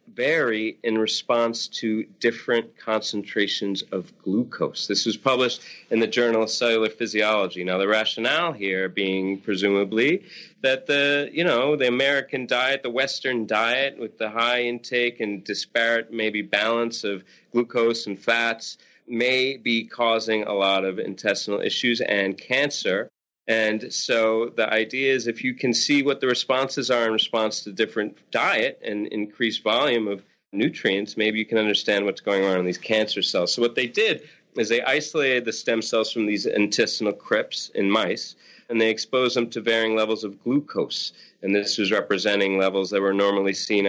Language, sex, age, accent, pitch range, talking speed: English, male, 30-49, American, 105-125 Hz, 170 wpm